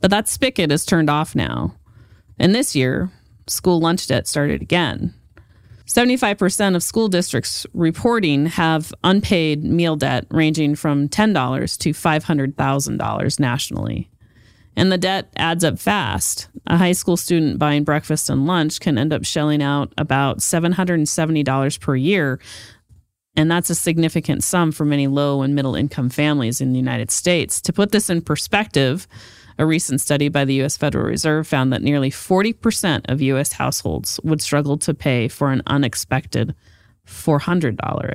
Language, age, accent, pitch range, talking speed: English, 30-49, American, 125-170 Hz, 155 wpm